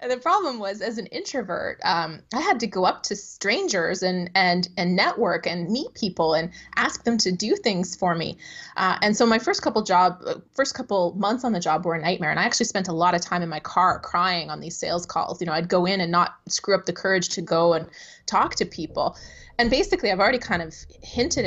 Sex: female